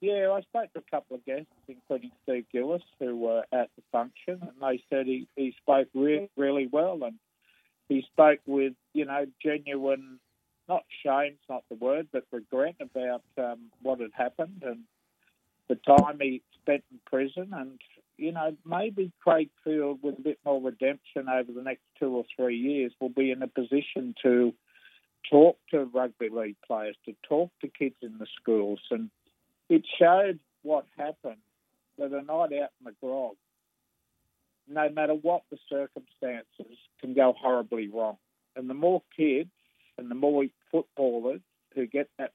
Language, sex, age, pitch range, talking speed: English, male, 50-69, 125-145 Hz, 170 wpm